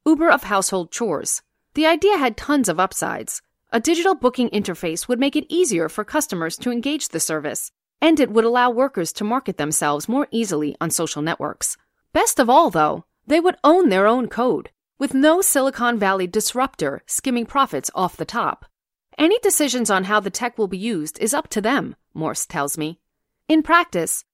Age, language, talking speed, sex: 40-59, English, 185 wpm, female